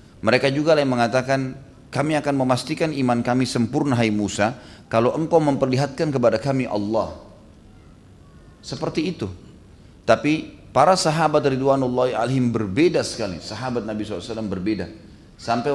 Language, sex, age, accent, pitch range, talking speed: Indonesian, male, 30-49, native, 100-135 Hz, 120 wpm